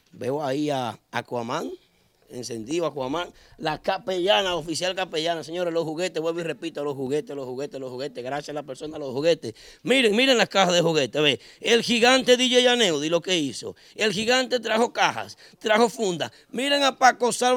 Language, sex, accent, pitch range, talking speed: Spanish, male, American, 125-195 Hz, 185 wpm